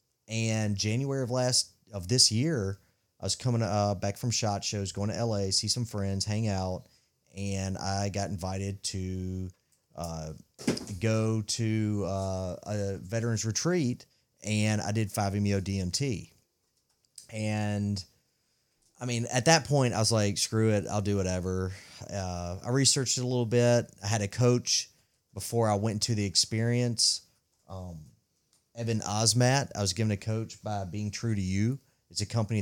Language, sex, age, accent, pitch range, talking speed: English, male, 30-49, American, 95-115 Hz, 160 wpm